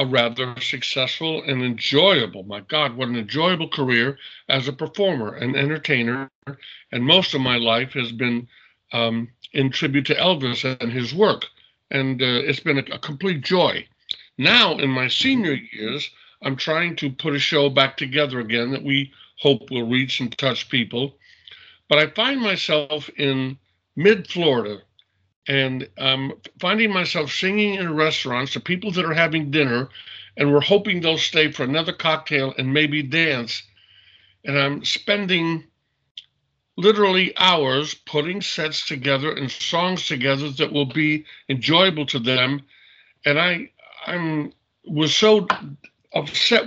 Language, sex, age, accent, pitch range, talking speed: English, male, 60-79, American, 130-165 Hz, 145 wpm